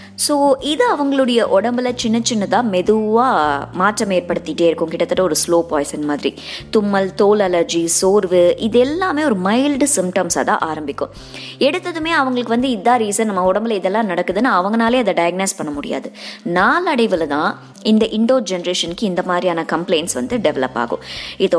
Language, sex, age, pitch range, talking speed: Tamil, male, 20-39, 170-250 Hz, 140 wpm